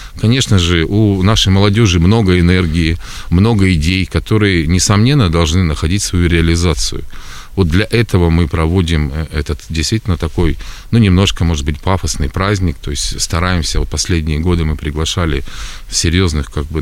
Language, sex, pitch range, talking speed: Russian, male, 80-95 Hz, 145 wpm